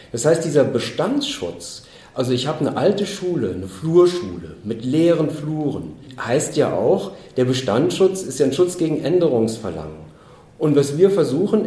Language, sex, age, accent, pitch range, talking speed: German, male, 40-59, German, 125-165 Hz, 155 wpm